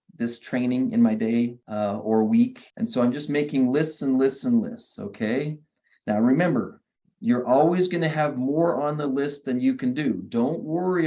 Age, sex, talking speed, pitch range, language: 30-49, male, 190 wpm, 125-160 Hz, English